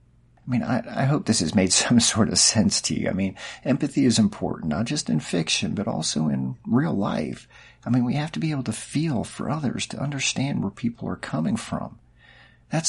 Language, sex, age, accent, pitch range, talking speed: English, male, 40-59, American, 95-135 Hz, 220 wpm